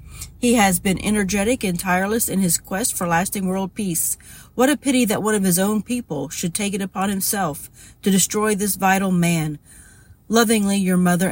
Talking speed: 185 wpm